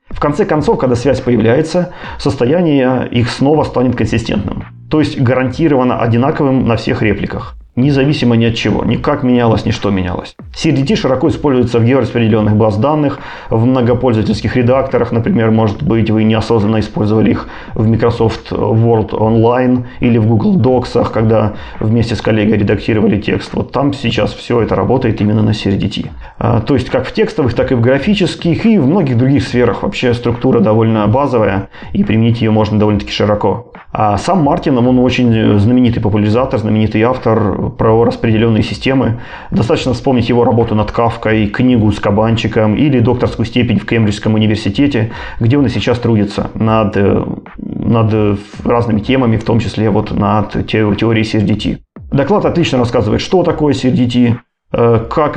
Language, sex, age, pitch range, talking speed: Russian, male, 30-49, 110-125 Hz, 155 wpm